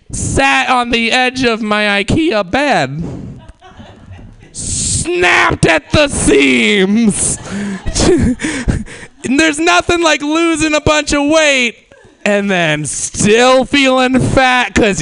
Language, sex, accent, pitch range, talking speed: English, male, American, 175-280 Hz, 105 wpm